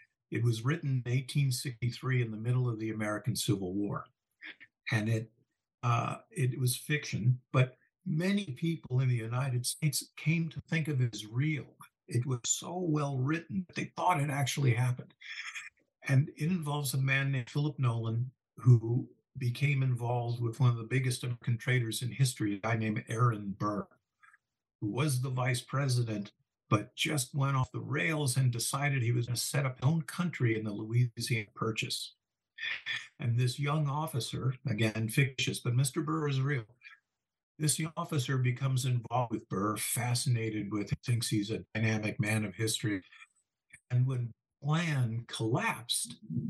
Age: 50-69